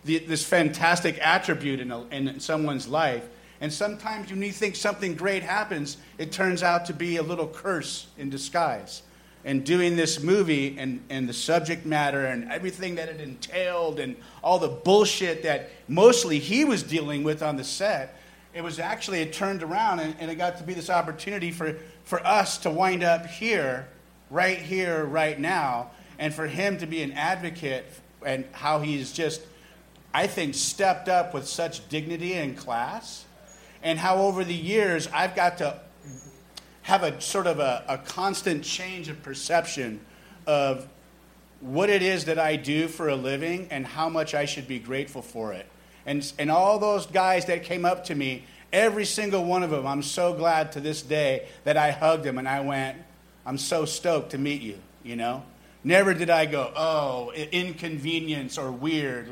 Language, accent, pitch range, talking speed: English, American, 145-180 Hz, 180 wpm